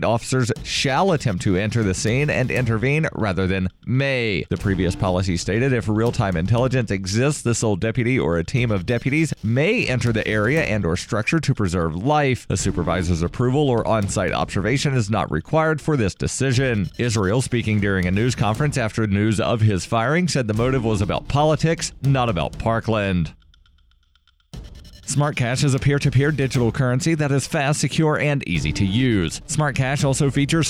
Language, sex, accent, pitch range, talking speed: English, male, American, 105-145 Hz, 175 wpm